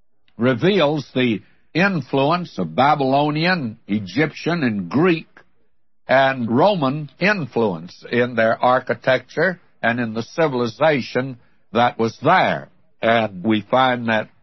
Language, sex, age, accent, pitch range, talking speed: English, male, 60-79, American, 120-170 Hz, 105 wpm